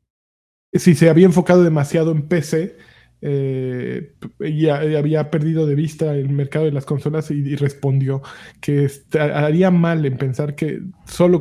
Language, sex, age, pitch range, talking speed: Spanish, male, 20-39, 140-170 Hz, 155 wpm